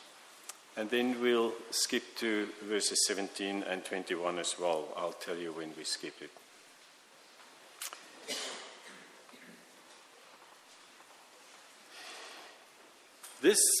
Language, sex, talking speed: English, male, 85 wpm